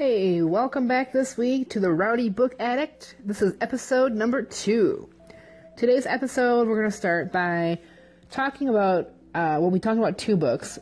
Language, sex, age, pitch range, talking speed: English, female, 30-49, 160-220 Hz, 170 wpm